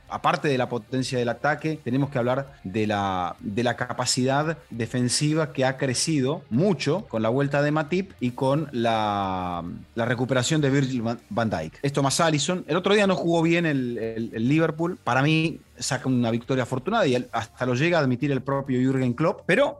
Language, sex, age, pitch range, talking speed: English, male, 30-49, 120-165 Hz, 190 wpm